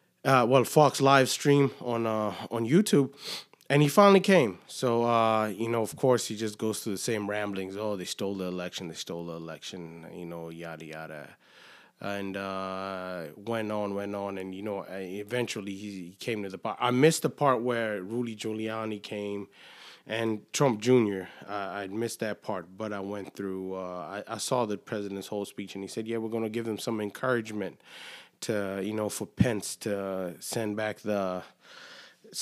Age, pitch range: 20-39, 95-120 Hz